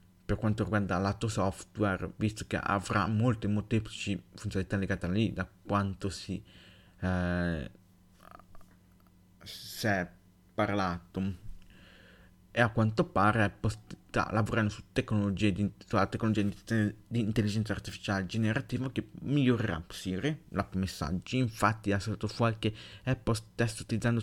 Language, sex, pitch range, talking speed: Italian, male, 95-115 Hz, 125 wpm